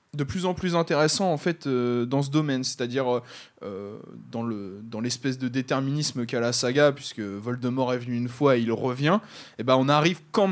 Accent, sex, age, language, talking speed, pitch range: French, male, 20-39, French, 210 wpm, 120-150 Hz